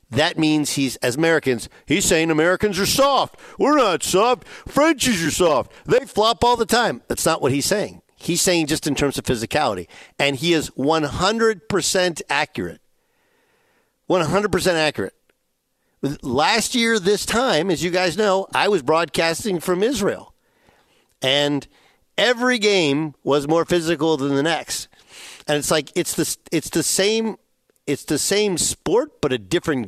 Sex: male